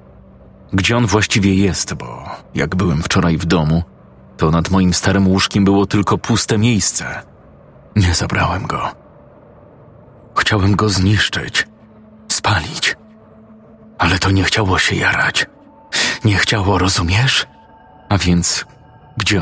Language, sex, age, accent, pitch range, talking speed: Polish, male, 30-49, native, 95-110 Hz, 115 wpm